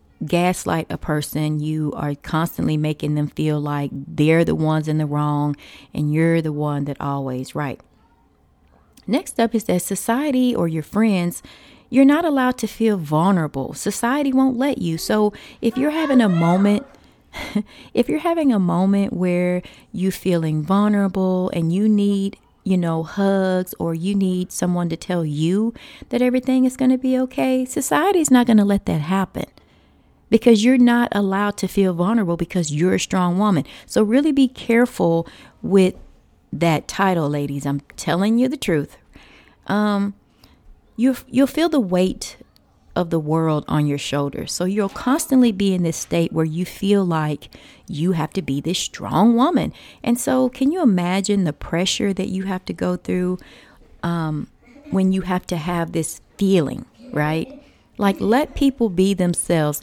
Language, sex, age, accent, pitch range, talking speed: English, female, 30-49, American, 155-215 Hz, 165 wpm